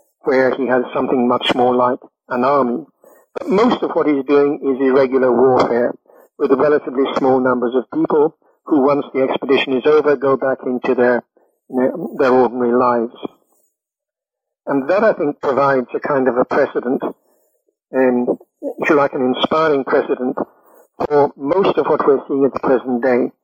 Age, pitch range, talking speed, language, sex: 60-79, 125-145 Hz, 170 wpm, English, male